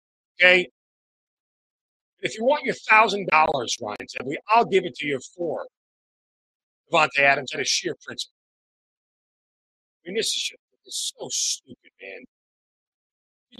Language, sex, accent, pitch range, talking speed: English, male, American, 155-250 Hz, 130 wpm